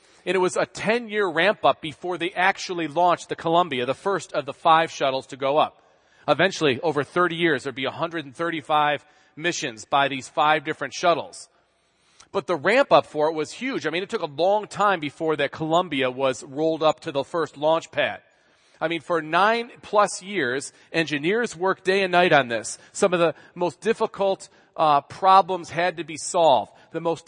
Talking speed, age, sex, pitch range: 185 wpm, 40-59, male, 155-200 Hz